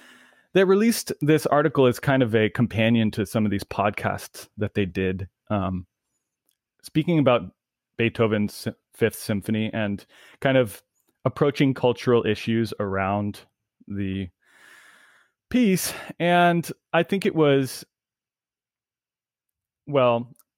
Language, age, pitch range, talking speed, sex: English, 30-49, 105-150 Hz, 110 wpm, male